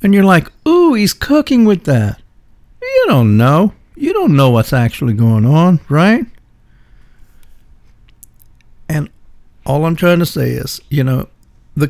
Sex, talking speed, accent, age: male, 145 wpm, American, 60-79